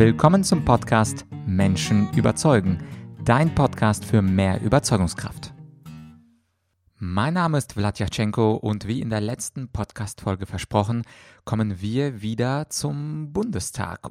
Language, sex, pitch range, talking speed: German, male, 100-125 Hz, 115 wpm